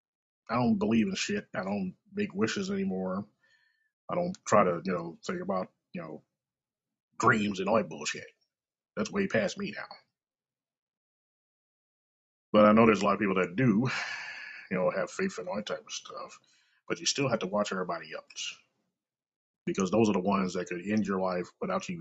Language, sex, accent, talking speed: English, male, American, 190 wpm